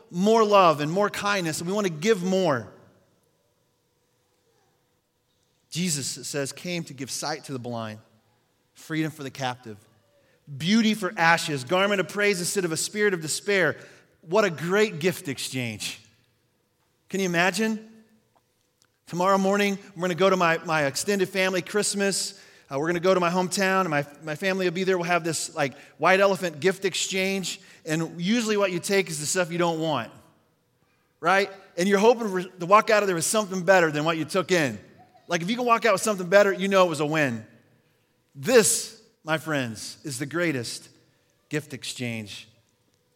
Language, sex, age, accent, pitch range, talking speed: English, male, 30-49, American, 130-190 Hz, 180 wpm